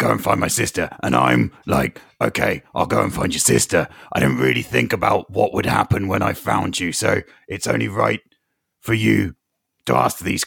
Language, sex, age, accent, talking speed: English, male, 40-59, British, 205 wpm